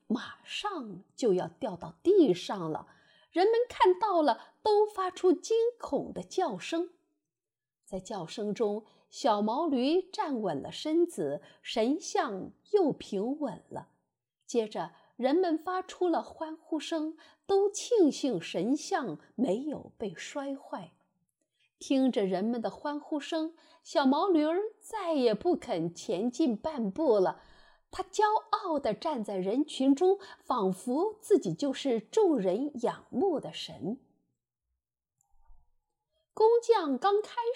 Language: Chinese